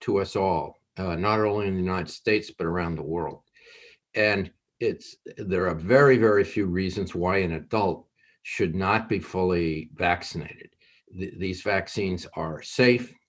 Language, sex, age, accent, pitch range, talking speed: English, male, 50-69, American, 90-125 Hz, 160 wpm